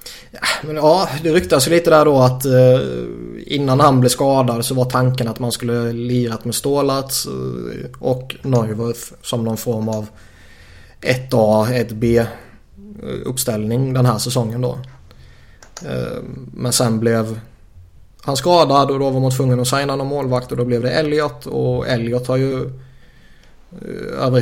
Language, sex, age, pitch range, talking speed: Swedish, male, 20-39, 115-130 Hz, 155 wpm